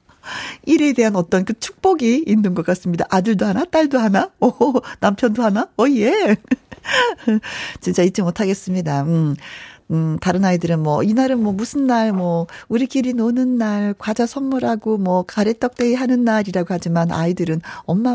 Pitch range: 180-255 Hz